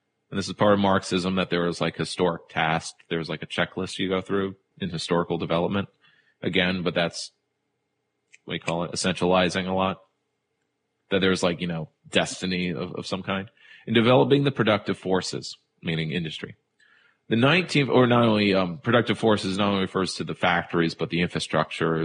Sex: male